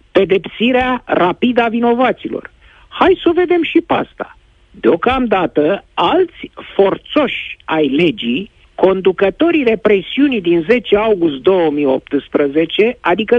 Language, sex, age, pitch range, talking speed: Romanian, male, 50-69, 160-255 Hz, 100 wpm